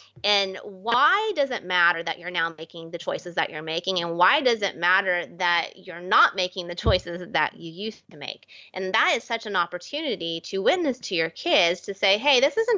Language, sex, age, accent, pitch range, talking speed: English, female, 20-39, American, 175-240 Hz, 215 wpm